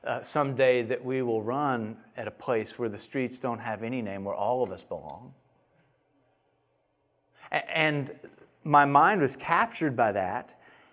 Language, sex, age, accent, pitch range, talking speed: English, male, 40-59, American, 120-150 Hz, 155 wpm